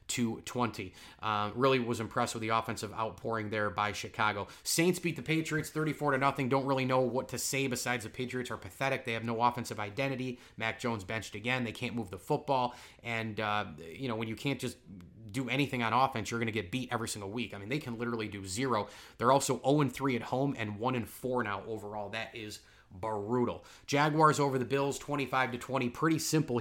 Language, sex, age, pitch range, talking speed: English, male, 30-49, 110-130 Hz, 220 wpm